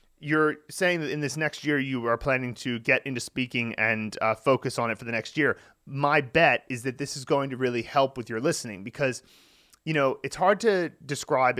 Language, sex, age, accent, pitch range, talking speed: English, male, 30-49, American, 110-140 Hz, 220 wpm